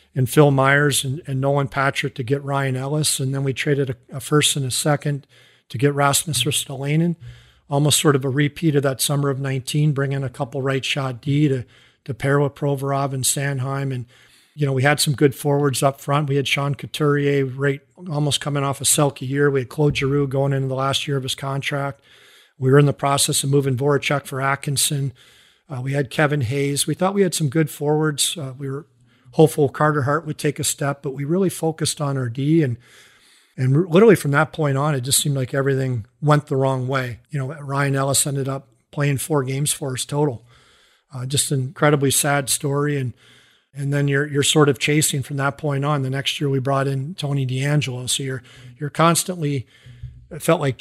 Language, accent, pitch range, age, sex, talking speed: English, American, 135-150 Hz, 40-59, male, 215 wpm